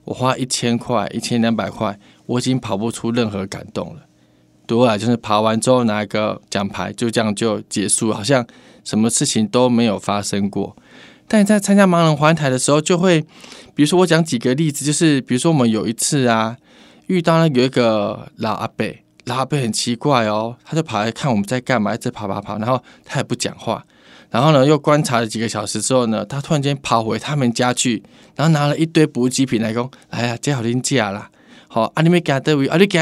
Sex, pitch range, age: male, 115-155 Hz, 20-39